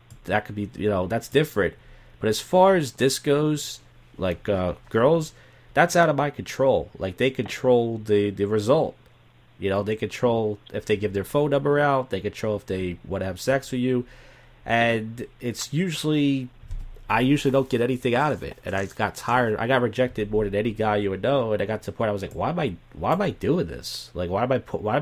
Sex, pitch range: male, 105-125 Hz